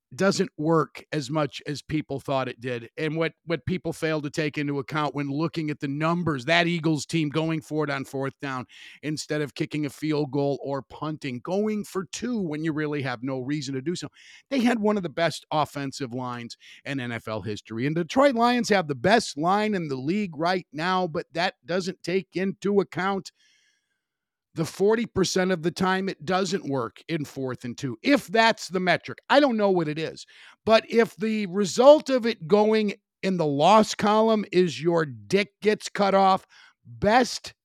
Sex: male